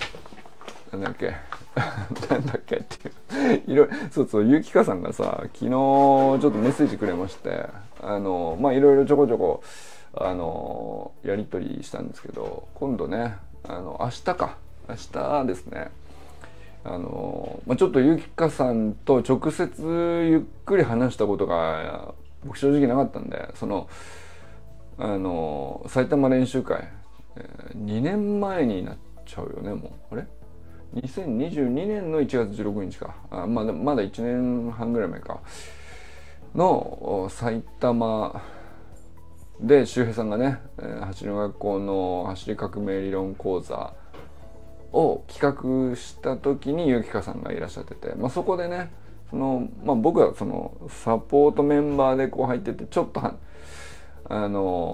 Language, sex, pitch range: Japanese, male, 95-135 Hz